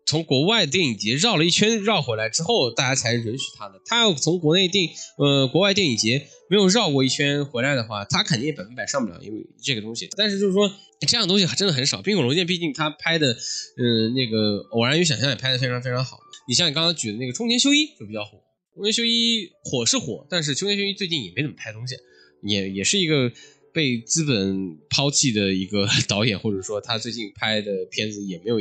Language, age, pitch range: Chinese, 10-29, 115-185 Hz